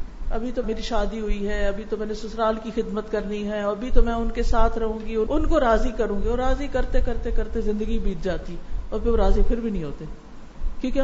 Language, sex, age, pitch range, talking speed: Urdu, female, 50-69, 200-255 Hz, 240 wpm